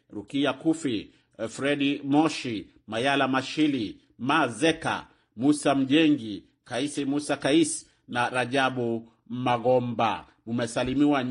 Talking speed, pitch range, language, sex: 85 wpm, 115-140 Hz, Swahili, male